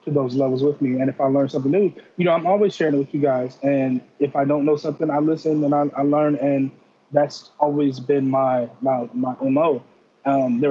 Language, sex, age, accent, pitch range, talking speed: English, male, 20-39, American, 130-145 Hz, 235 wpm